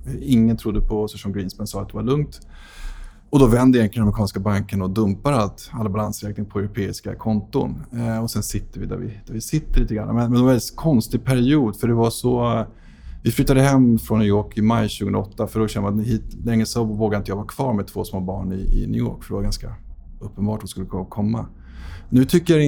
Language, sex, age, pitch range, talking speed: Swedish, male, 20-39, 105-120 Hz, 235 wpm